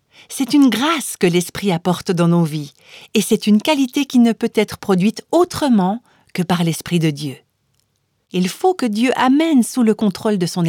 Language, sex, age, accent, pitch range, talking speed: French, female, 50-69, French, 175-250 Hz, 190 wpm